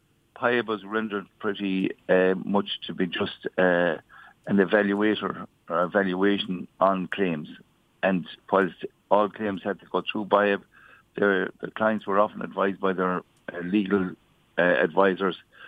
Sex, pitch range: male, 90-105 Hz